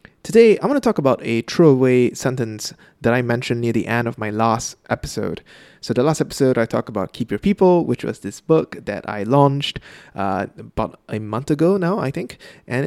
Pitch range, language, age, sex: 115-145 Hz, English, 20-39, male